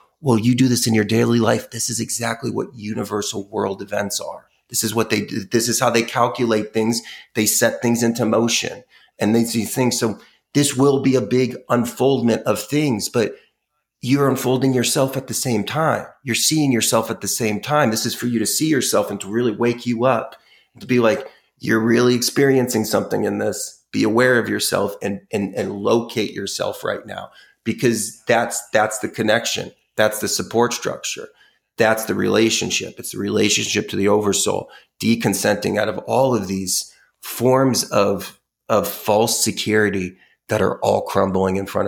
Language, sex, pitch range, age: English, male, 105-130 Hz, 30-49